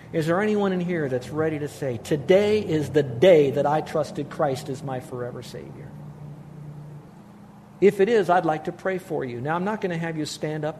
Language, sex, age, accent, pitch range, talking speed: English, male, 50-69, American, 140-180 Hz, 215 wpm